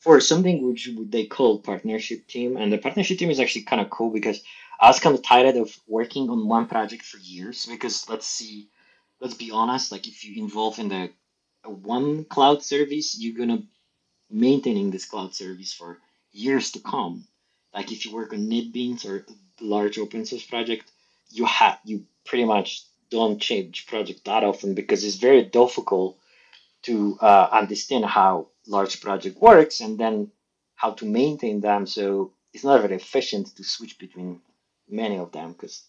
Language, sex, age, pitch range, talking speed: English, male, 30-49, 100-125 Hz, 180 wpm